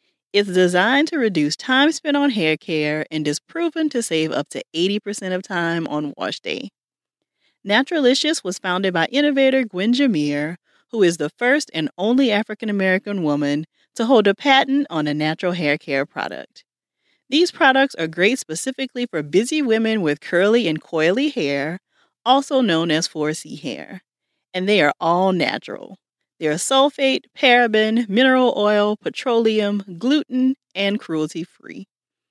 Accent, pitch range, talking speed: American, 160-245 Hz, 145 wpm